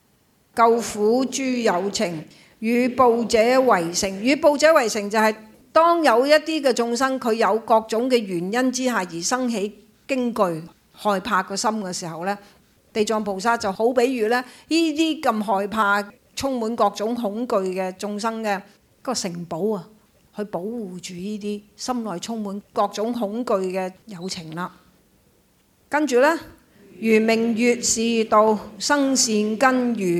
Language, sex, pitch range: Chinese, female, 200-240 Hz